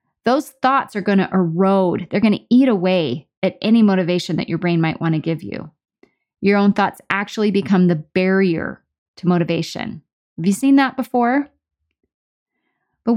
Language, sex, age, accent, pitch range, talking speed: English, female, 30-49, American, 180-230 Hz, 170 wpm